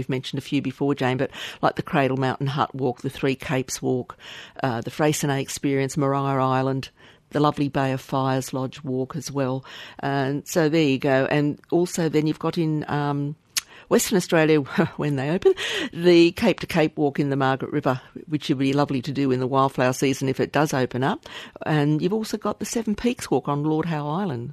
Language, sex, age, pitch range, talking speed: English, female, 50-69, 135-170 Hz, 210 wpm